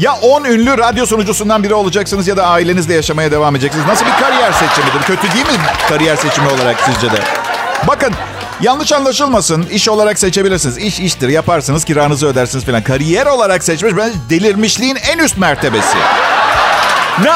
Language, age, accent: Turkish, 50-69, native